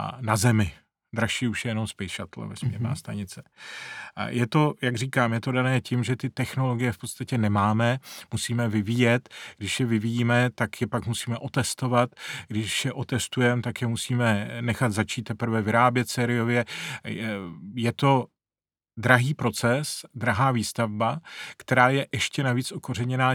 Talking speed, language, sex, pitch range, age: 145 wpm, Czech, male, 110-125 Hz, 40-59